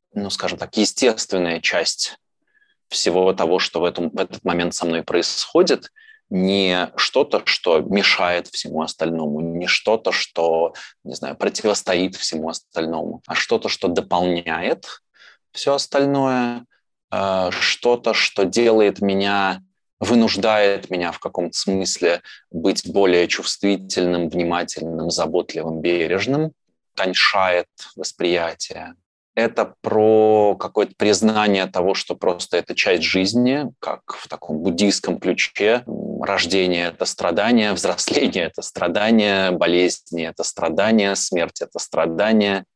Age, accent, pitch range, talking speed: 20-39, native, 90-120 Hz, 110 wpm